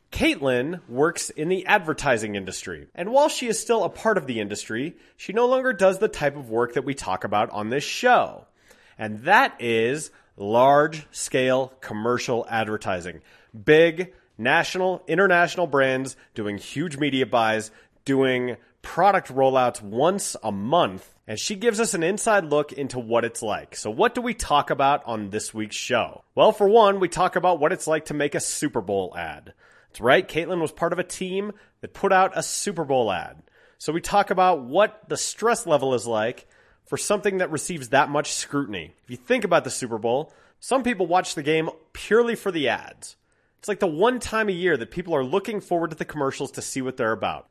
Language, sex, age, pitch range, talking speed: English, male, 30-49, 125-190 Hz, 195 wpm